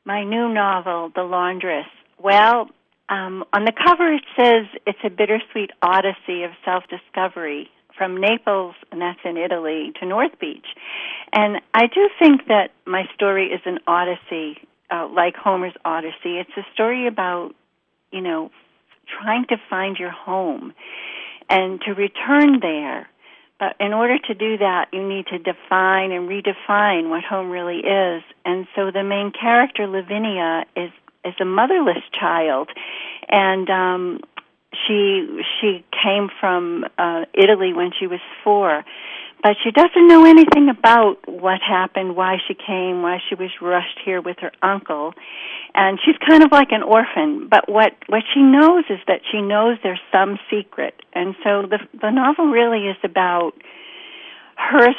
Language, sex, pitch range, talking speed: English, female, 180-230 Hz, 155 wpm